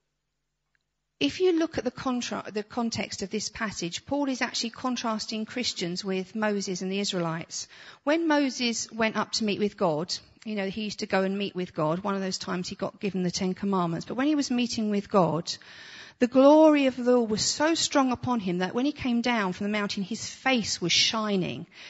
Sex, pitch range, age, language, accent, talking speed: female, 190-250 Hz, 40-59, English, British, 210 wpm